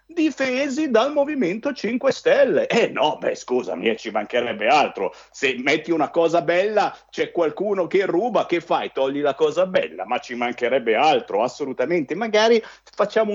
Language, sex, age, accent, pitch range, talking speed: Italian, male, 50-69, native, 145-225 Hz, 155 wpm